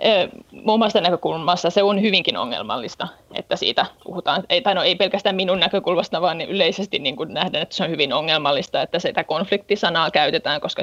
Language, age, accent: Finnish, 20-39, native